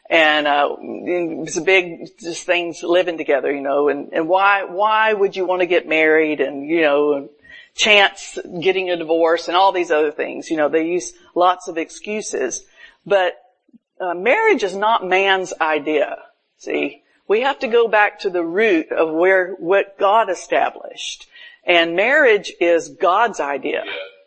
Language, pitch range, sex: English, 170-250 Hz, female